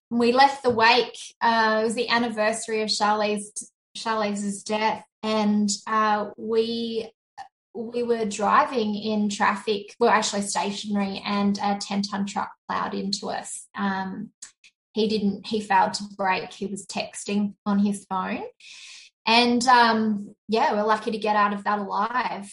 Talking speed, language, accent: 145 wpm, English, Australian